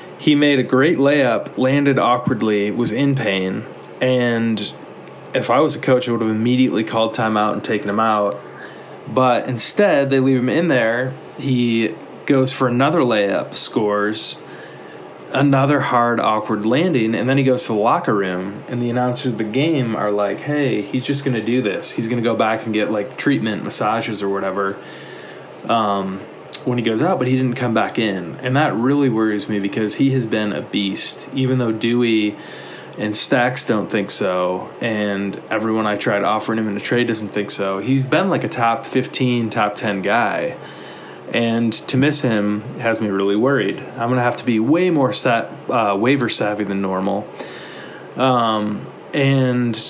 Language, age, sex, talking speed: English, 20-39, male, 185 wpm